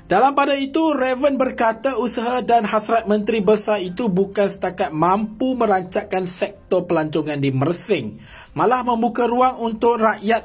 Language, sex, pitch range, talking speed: Malay, male, 170-245 Hz, 140 wpm